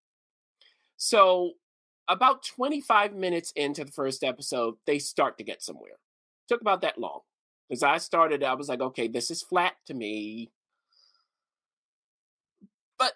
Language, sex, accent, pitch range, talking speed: English, male, American, 120-195 Hz, 140 wpm